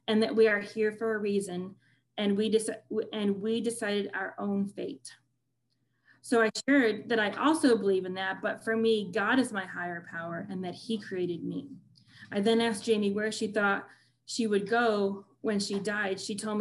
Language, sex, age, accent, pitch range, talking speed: English, female, 20-39, American, 190-220 Hz, 190 wpm